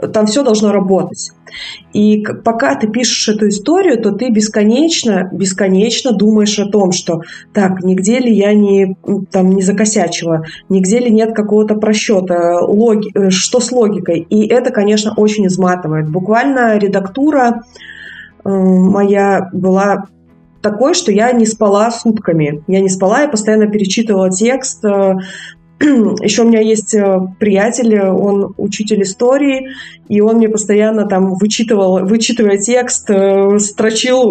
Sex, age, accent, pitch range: female, 20-39, native, 195-240 Hz